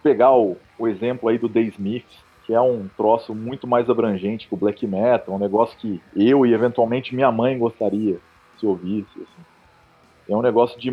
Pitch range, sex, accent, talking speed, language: 100-140 Hz, male, Brazilian, 200 wpm, Portuguese